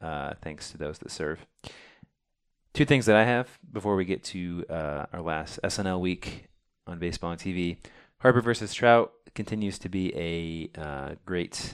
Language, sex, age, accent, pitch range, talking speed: English, male, 20-39, American, 90-110 Hz, 170 wpm